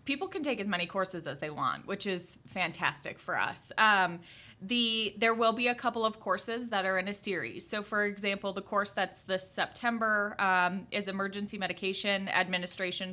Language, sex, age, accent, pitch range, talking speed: English, female, 20-39, American, 175-205 Hz, 185 wpm